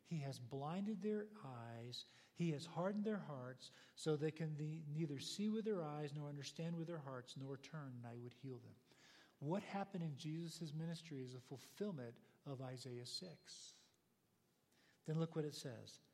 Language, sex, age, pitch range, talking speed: English, male, 50-69, 130-180 Hz, 170 wpm